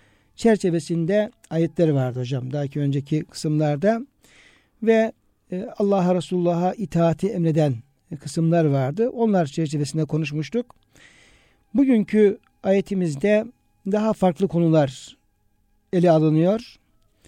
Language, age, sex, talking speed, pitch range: Turkish, 60-79, male, 85 wpm, 155-195 Hz